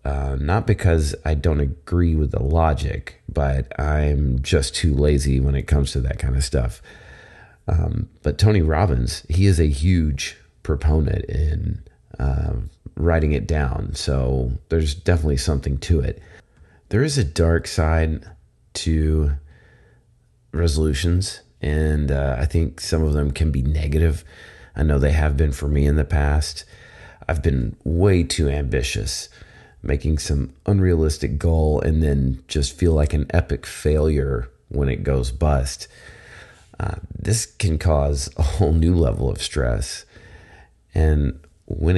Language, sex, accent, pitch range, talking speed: English, male, American, 70-85 Hz, 145 wpm